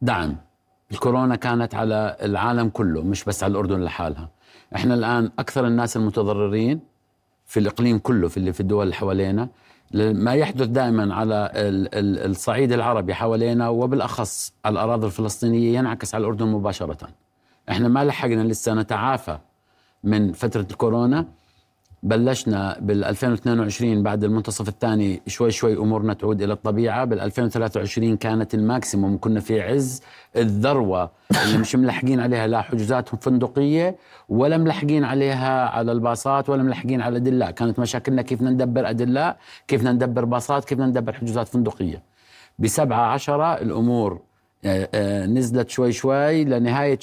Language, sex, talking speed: Arabic, male, 130 wpm